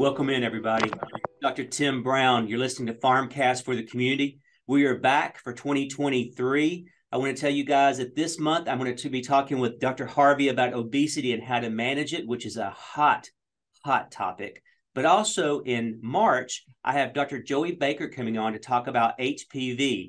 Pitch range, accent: 120-140 Hz, American